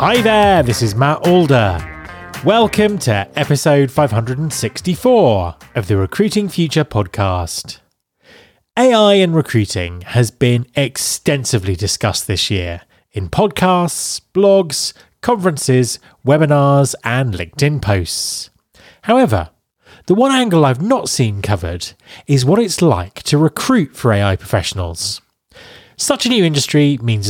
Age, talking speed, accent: 30-49, 120 wpm, British